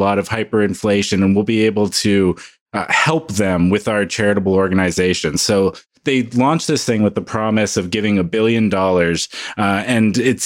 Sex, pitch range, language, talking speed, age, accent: male, 100-120 Hz, English, 180 wpm, 30-49, American